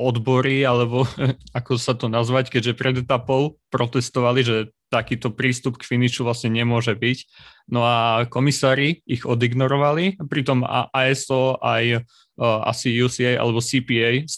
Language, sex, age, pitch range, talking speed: Slovak, male, 20-39, 115-130 Hz, 135 wpm